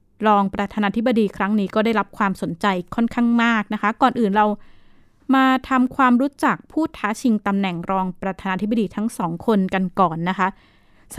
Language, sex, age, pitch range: Thai, female, 20-39, 195-240 Hz